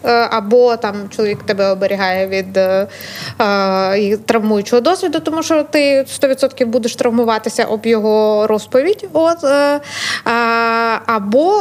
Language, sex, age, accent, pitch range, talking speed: Ukrainian, female, 20-39, native, 210-255 Hz, 110 wpm